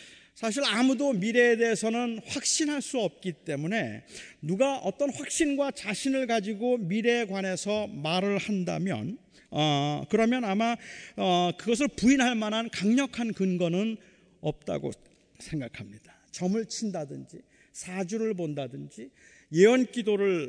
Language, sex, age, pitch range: Korean, male, 40-59, 175-225 Hz